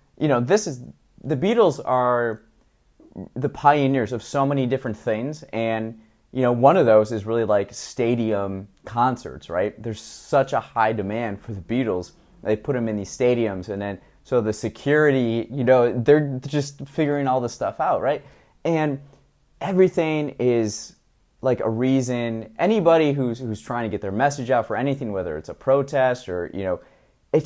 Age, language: 20-39, English